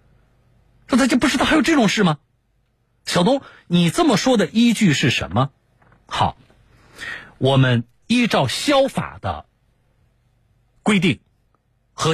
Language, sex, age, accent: Chinese, male, 50-69, native